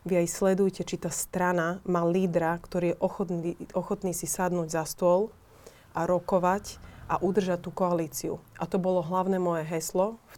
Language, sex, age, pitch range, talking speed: Slovak, female, 30-49, 170-185 Hz, 170 wpm